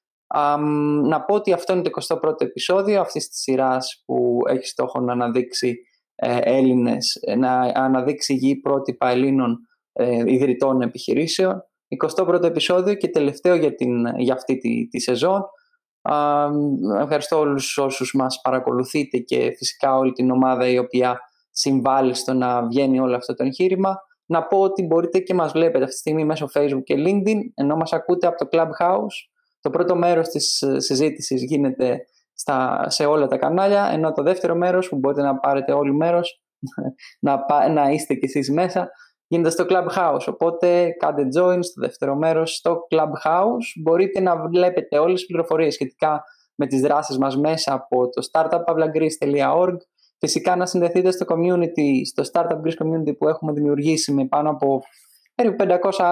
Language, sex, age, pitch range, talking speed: Greek, male, 20-39, 135-175 Hz, 160 wpm